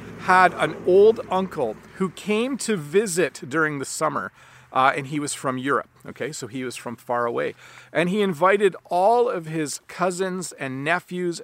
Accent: American